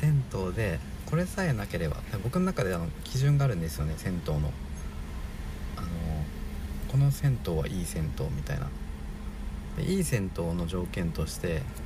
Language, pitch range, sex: Japanese, 70-110 Hz, male